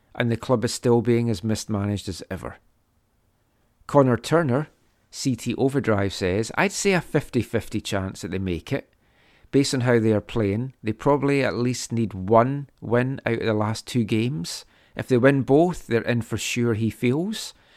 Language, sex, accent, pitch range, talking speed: English, male, British, 100-135 Hz, 180 wpm